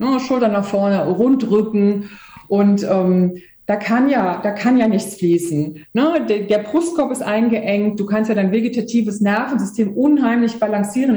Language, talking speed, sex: German, 130 wpm, female